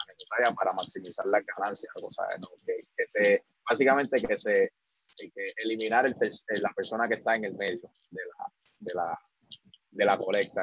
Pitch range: 110-170 Hz